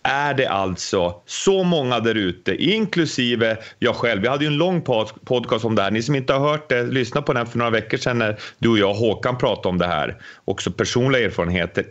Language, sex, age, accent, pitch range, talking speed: English, male, 30-49, Swedish, 120-160 Hz, 230 wpm